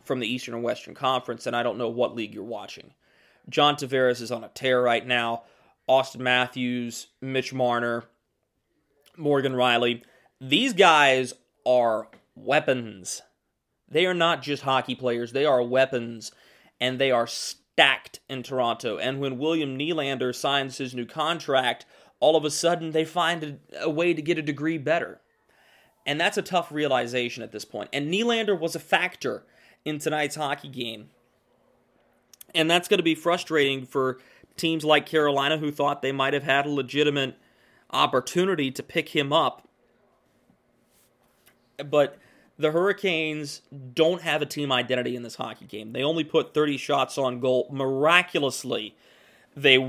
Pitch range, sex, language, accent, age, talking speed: 125-155 Hz, male, English, American, 30-49, 155 wpm